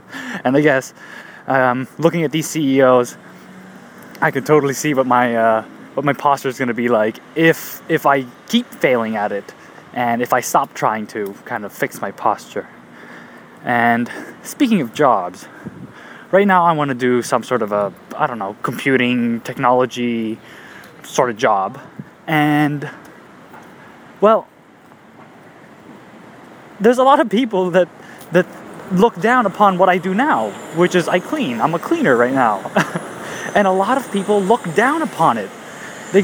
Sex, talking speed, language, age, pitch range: male, 160 wpm, English, 20-39, 135-220 Hz